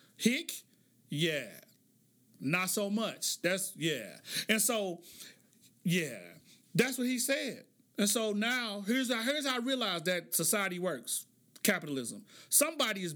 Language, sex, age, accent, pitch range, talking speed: English, male, 40-59, American, 200-255 Hz, 130 wpm